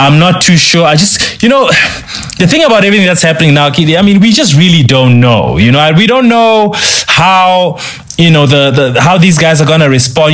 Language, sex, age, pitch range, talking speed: English, male, 20-39, 125-165 Hz, 225 wpm